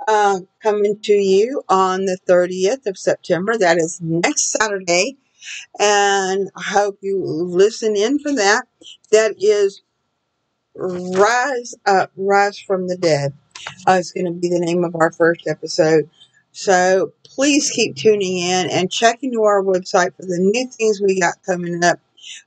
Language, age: English, 50-69